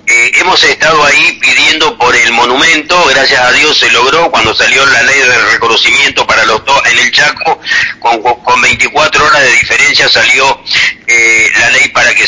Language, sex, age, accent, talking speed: Spanish, male, 40-59, Argentinian, 180 wpm